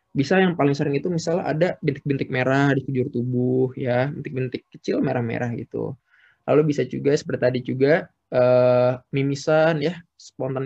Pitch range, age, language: 125-155 Hz, 20-39, Indonesian